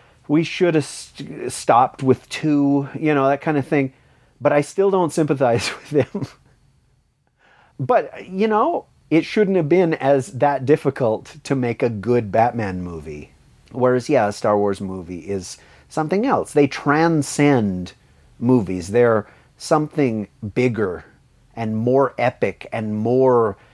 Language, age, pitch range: English, 40-59, 110-140 Hz